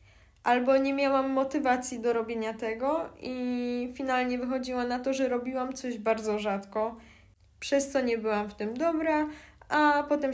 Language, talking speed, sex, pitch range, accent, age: Polish, 150 wpm, female, 195-245 Hz, native, 10-29